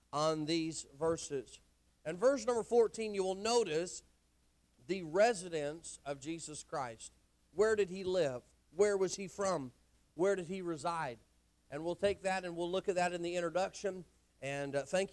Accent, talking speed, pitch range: American, 165 wpm, 170-230 Hz